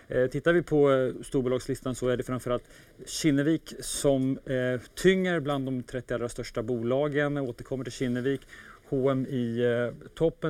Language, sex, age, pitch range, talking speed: Swedish, male, 30-49, 120-140 Hz, 130 wpm